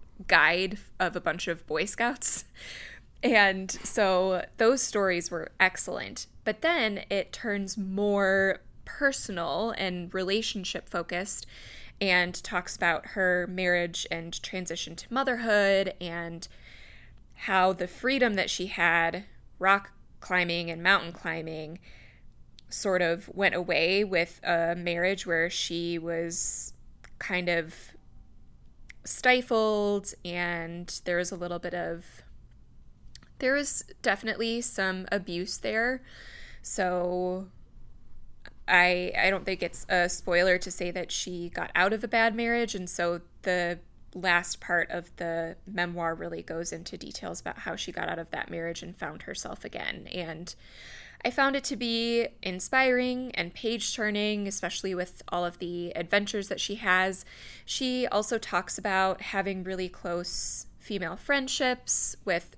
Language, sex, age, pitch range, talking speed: English, female, 20-39, 175-205 Hz, 135 wpm